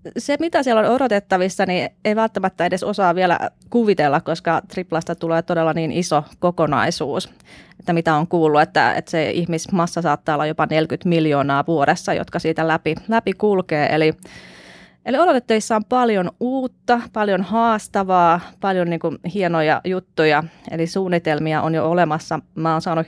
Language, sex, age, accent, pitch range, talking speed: Finnish, female, 30-49, native, 160-195 Hz, 150 wpm